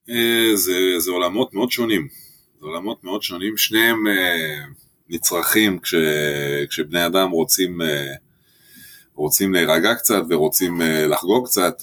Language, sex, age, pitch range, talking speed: Hebrew, male, 20-39, 75-90 Hz, 120 wpm